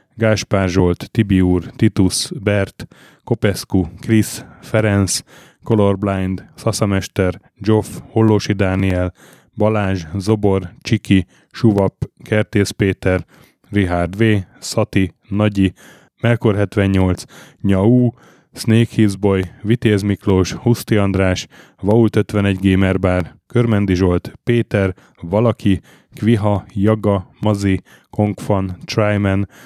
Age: 10-29